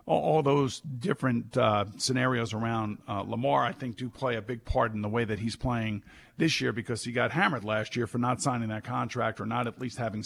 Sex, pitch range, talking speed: male, 115-145 Hz, 230 wpm